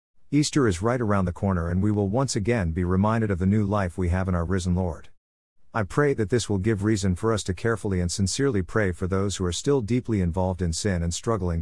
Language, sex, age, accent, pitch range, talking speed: English, male, 50-69, American, 90-115 Hz, 250 wpm